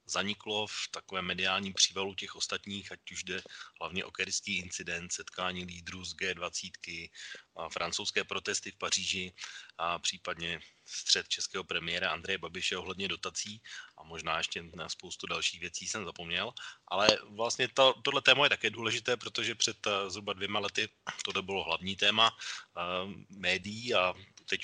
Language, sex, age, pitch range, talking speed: Slovak, male, 30-49, 90-105 Hz, 150 wpm